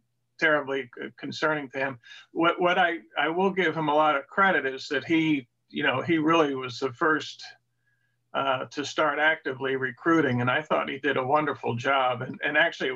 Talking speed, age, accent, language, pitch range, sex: 190 wpm, 50-69, American, English, 135-165 Hz, male